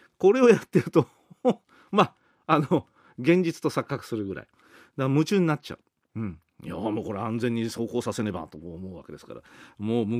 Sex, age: male, 40-59